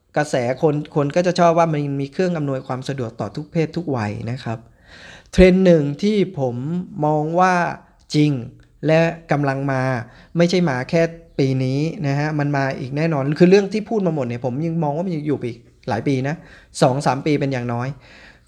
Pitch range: 130-165 Hz